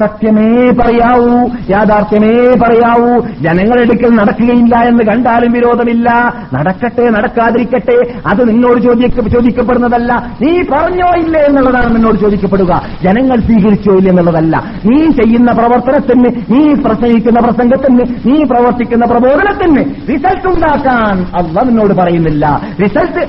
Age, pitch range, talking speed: 50-69, 180-245 Hz, 95 wpm